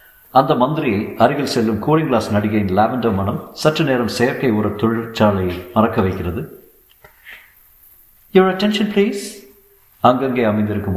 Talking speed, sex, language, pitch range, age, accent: 100 wpm, male, Tamil, 95-115 Hz, 50-69, native